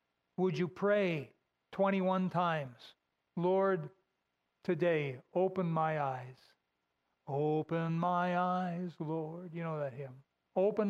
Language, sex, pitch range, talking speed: English, male, 150-190 Hz, 105 wpm